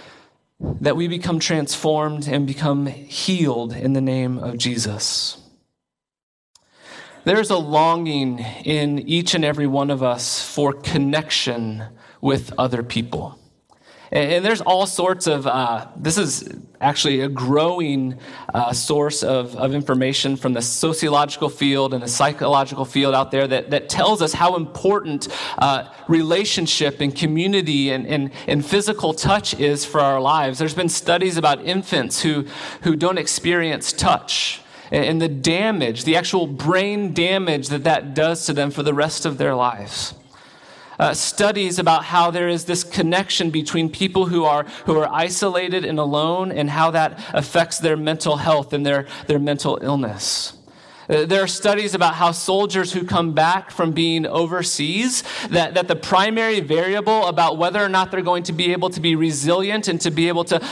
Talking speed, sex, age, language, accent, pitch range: 160 wpm, male, 30-49, English, American, 140-175 Hz